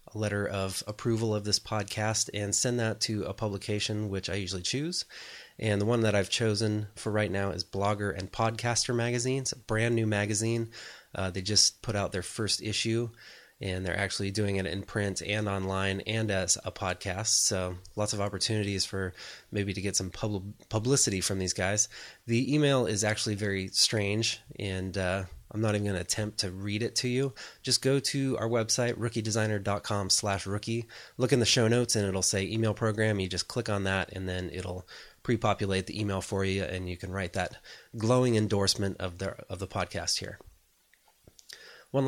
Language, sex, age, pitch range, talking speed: English, male, 20-39, 95-115 Hz, 190 wpm